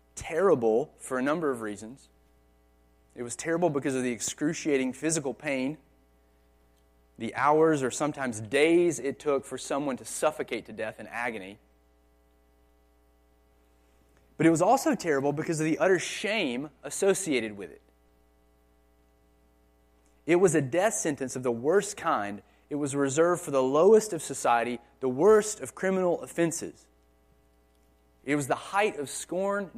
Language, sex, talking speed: English, male, 145 wpm